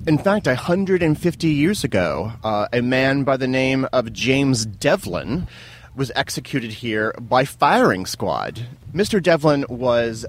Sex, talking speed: male, 135 wpm